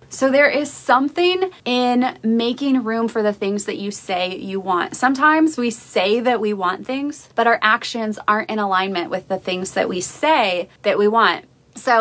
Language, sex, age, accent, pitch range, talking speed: English, female, 20-39, American, 195-235 Hz, 190 wpm